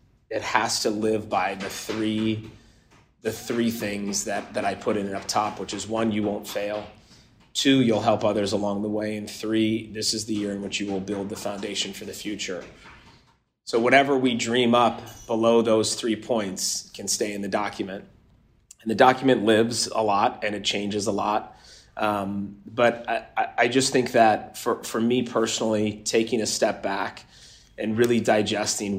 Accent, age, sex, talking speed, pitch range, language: American, 30-49, male, 185 wpm, 105-115 Hz, English